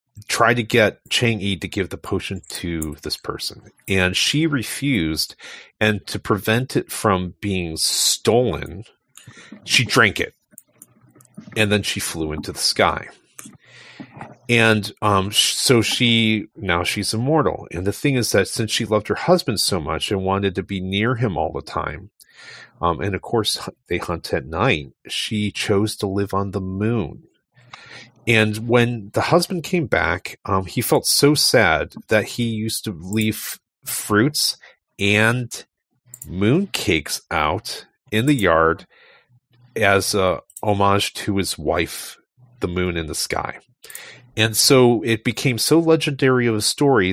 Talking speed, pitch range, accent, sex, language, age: 150 wpm, 95-120 Hz, American, male, English, 40-59